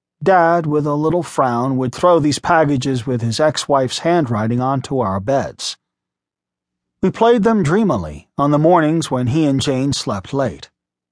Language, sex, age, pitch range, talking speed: English, male, 40-59, 125-180 Hz, 160 wpm